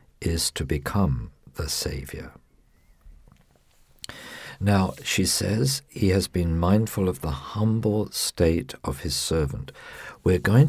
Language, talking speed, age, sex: English, 120 wpm, 50-69, male